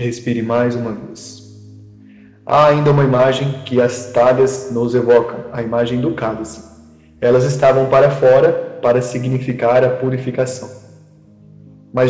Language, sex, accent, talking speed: Portuguese, male, Brazilian, 130 wpm